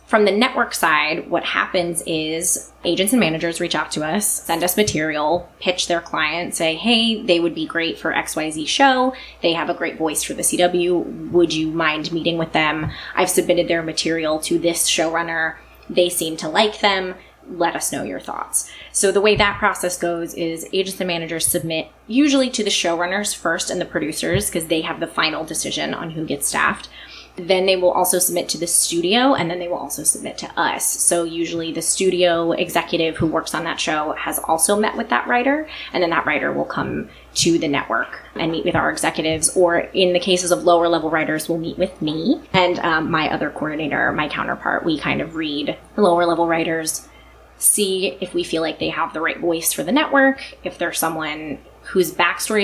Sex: female